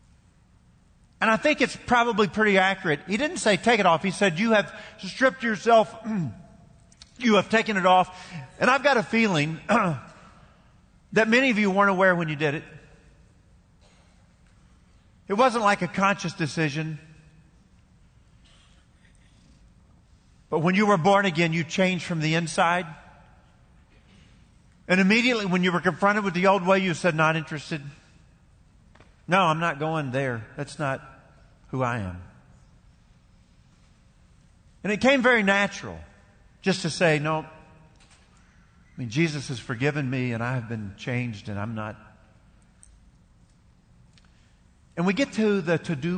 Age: 50-69